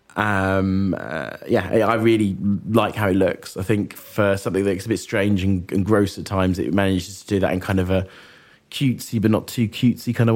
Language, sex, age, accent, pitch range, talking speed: English, male, 20-39, British, 100-115 Hz, 225 wpm